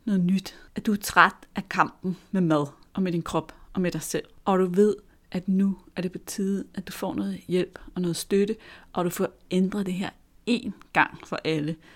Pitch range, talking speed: 175-225 Hz, 225 wpm